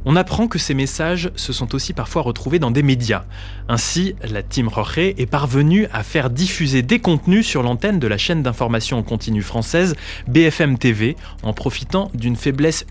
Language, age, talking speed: French, 20-39, 180 wpm